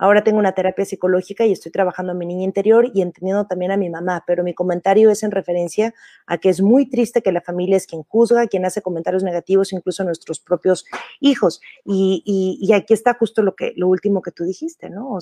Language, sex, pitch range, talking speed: Spanish, female, 185-220 Hz, 235 wpm